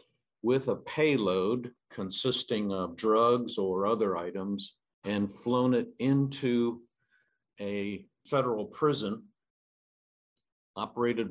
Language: English